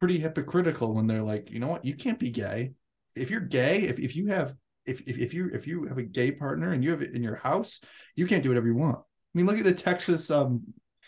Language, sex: English, male